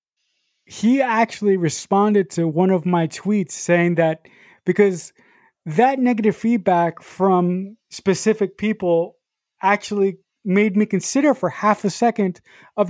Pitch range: 175-220 Hz